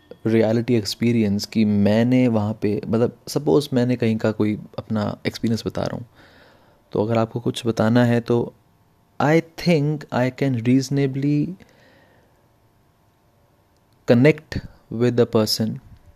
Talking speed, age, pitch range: 125 wpm, 30-49, 105-135 Hz